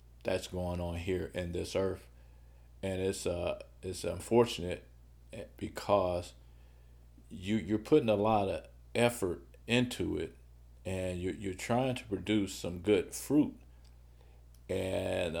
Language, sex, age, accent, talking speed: English, male, 50-69, American, 120 wpm